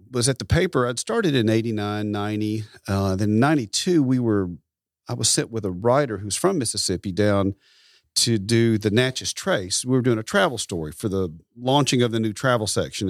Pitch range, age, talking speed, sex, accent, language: 100-125 Hz, 40-59, 195 wpm, male, American, English